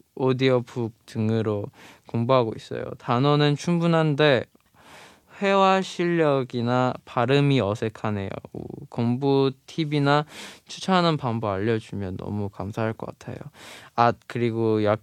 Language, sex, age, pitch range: Chinese, male, 20-39, 115-140 Hz